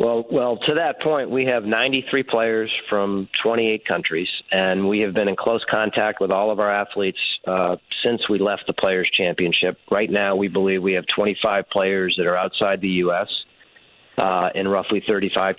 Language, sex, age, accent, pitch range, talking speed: English, male, 40-59, American, 95-110 Hz, 185 wpm